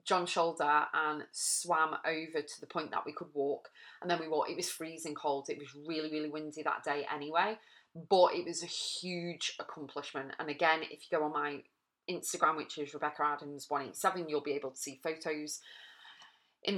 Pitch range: 145-175 Hz